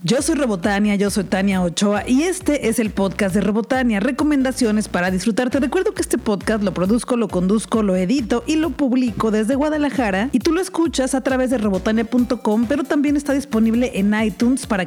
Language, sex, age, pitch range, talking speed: Spanish, female, 40-59, 195-265 Hz, 190 wpm